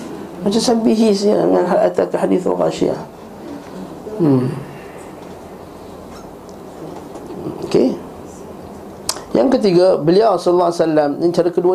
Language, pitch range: Malay, 140-180 Hz